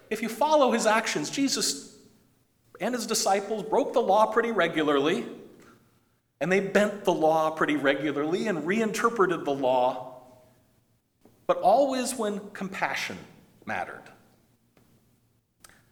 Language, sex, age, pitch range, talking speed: English, male, 40-59, 125-200 Hz, 115 wpm